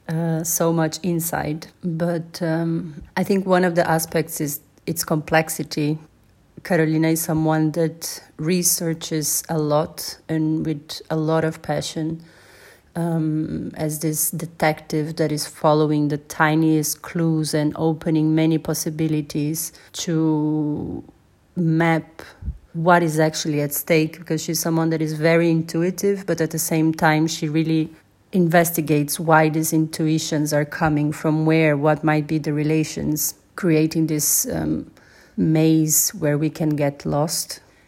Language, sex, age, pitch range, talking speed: French, female, 30-49, 155-165 Hz, 135 wpm